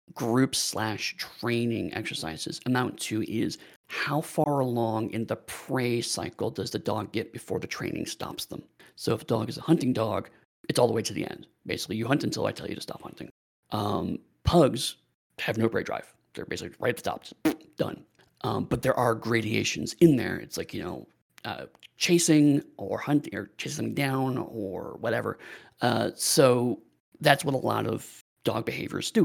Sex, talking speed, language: male, 185 wpm, English